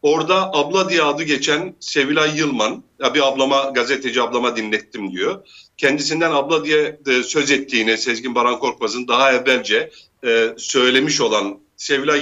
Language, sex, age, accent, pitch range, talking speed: Turkish, male, 50-69, native, 135-185 Hz, 135 wpm